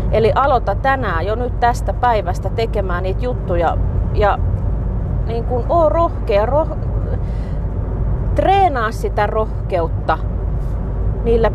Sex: female